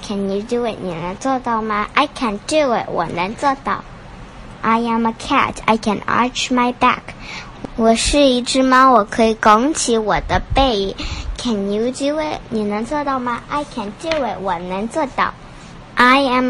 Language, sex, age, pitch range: Chinese, male, 10-29, 210-255 Hz